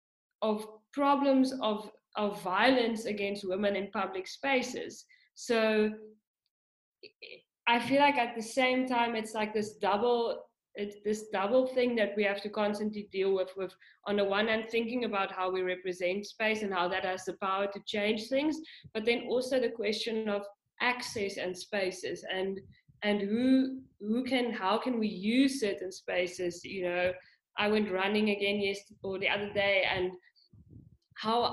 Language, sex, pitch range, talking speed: English, female, 195-235 Hz, 165 wpm